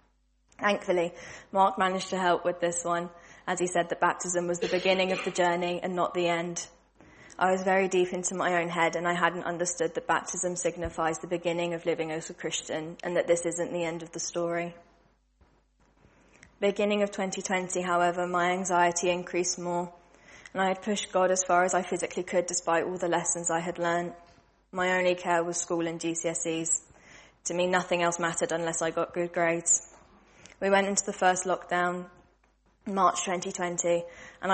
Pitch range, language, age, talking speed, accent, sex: 170-185 Hz, English, 20-39, 185 wpm, British, female